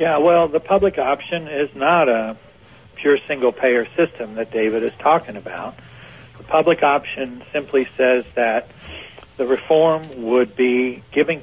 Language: English